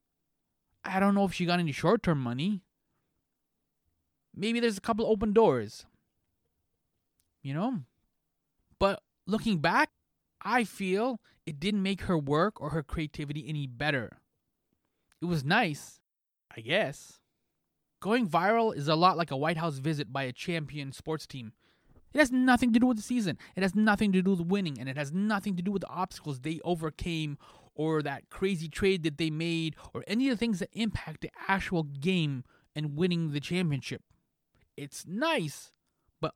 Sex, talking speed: male, 170 wpm